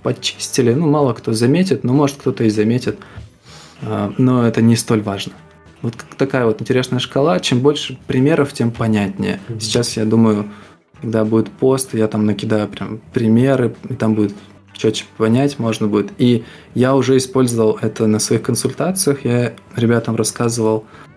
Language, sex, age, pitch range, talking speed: Russian, male, 20-39, 110-130 Hz, 155 wpm